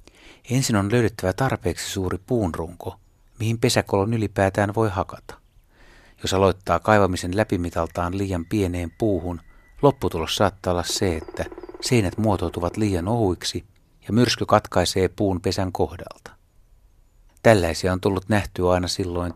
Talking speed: 120 wpm